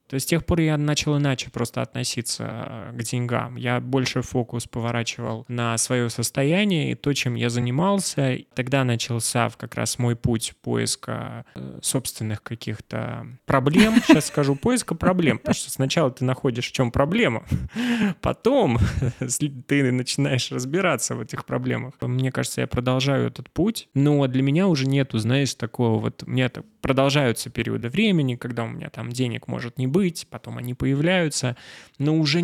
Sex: male